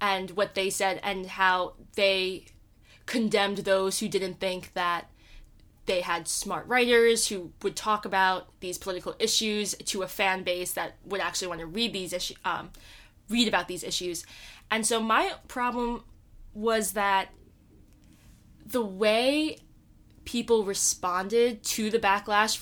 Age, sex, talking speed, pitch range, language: 20-39, female, 145 wpm, 185-215 Hz, English